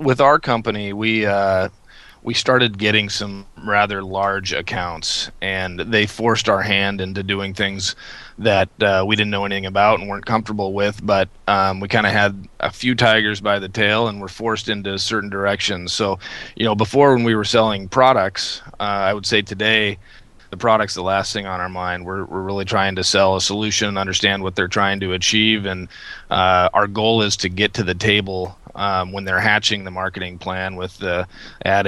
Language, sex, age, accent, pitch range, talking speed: English, male, 30-49, American, 95-110 Hz, 200 wpm